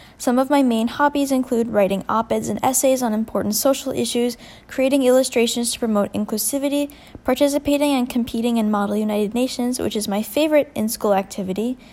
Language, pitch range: English, 215-265 Hz